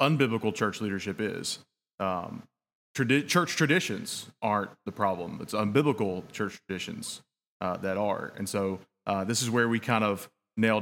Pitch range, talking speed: 100-125 Hz, 155 wpm